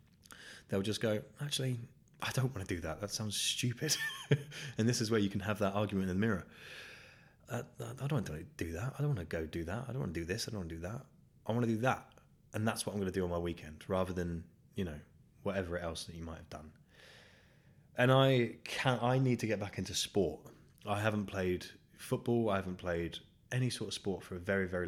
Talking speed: 250 wpm